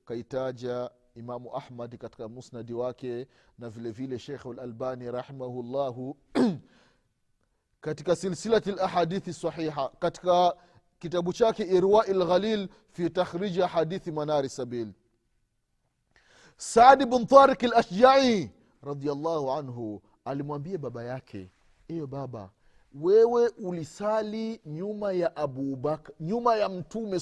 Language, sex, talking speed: Swahili, male, 80 wpm